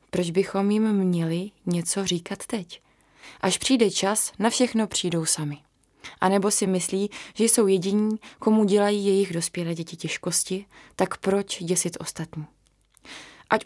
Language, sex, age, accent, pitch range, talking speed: Czech, female, 20-39, native, 170-210 Hz, 140 wpm